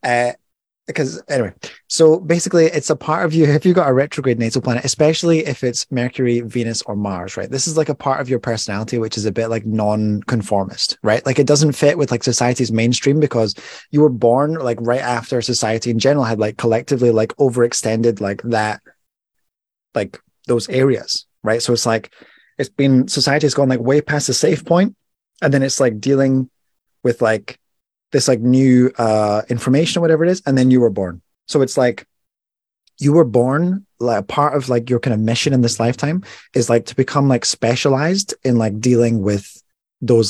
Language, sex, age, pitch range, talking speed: English, male, 20-39, 115-145 Hz, 200 wpm